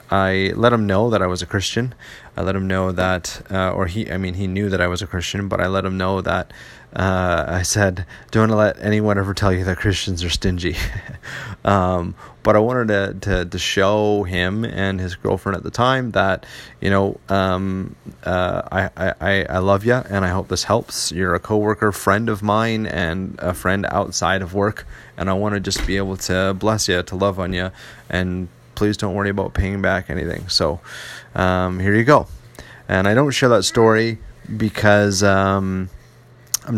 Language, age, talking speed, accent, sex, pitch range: English, 30-49, 200 wpm, American, male, 95-105 Hz